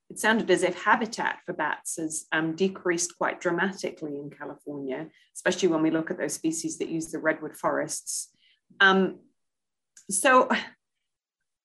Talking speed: 145 wpm